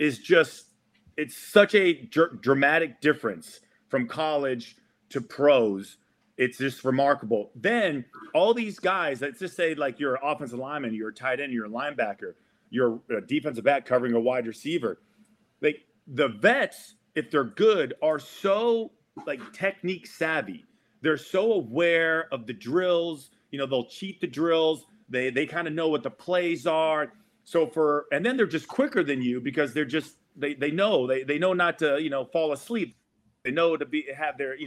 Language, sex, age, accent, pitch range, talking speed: English, male, 40-59, American, 135-195 Hz, 180 wpm